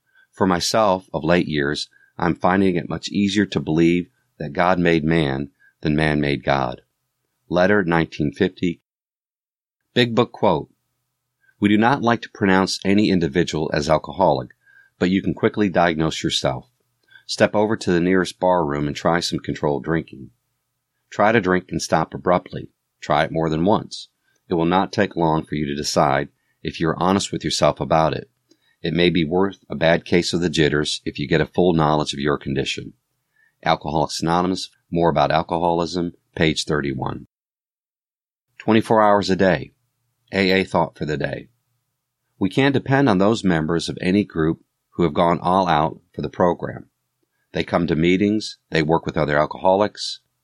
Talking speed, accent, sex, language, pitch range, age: 170 wpm, American, male, English, 80-105 Hz, 40-59